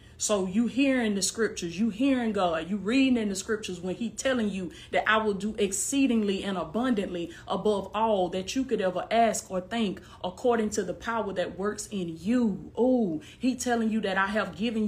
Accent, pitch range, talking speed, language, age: American, 185-230 Hz, 200 wpm, English, 20-39